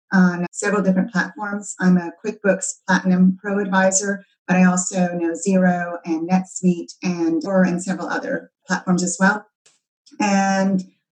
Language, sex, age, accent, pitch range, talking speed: English, female, 30-49, American, 170-200 Hz, 135 wpm